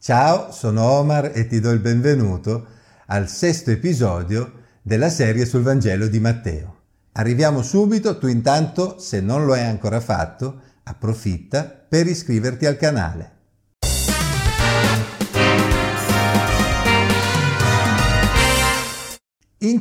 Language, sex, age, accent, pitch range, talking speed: Italian, male, 50-69, native, 110-145 Hz, 100 wpm